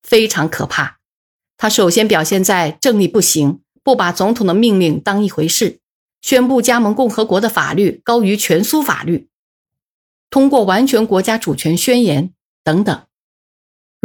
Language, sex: Chinese, female